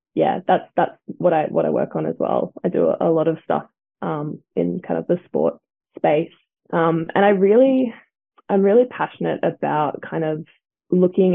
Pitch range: 160-180 Hz